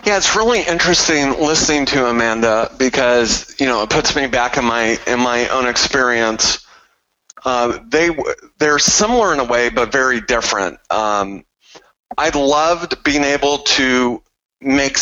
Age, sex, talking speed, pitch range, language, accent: 30-49, male, 150 wpm, 120-150 Hz, English, American